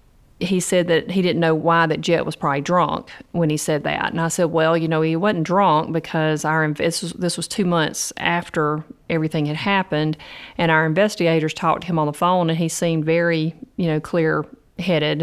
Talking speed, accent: 215 wpm, American